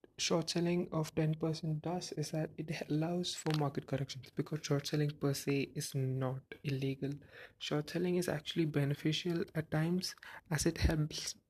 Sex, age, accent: male, 20-39, Indian